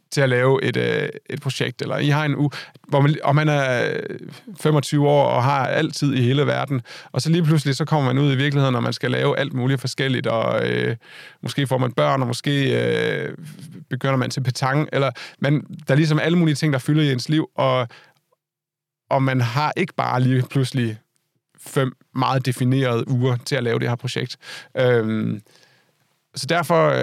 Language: Danish